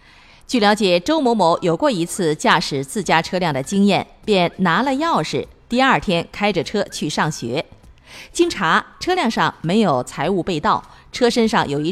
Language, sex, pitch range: Chinese, female, 160-230 Hz